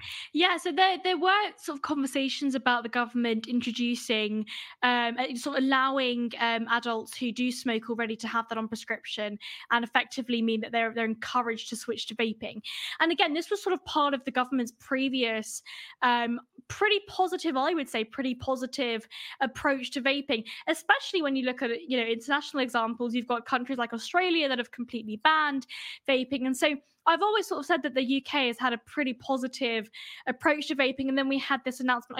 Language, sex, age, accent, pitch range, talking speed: English, female, 10-29, British, 235-275 Hz, 190 wpm